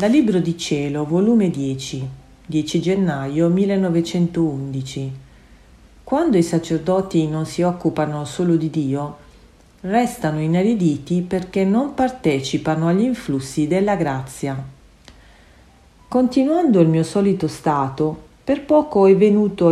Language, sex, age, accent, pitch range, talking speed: Italian, female, 40-59, native, 150-215 Hz, 110 wpm